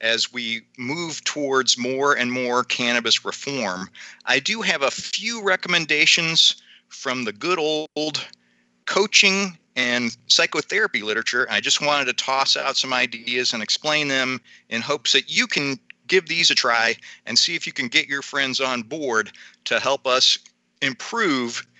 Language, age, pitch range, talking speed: English, 40-59, 125-155 Hz, 155 wpm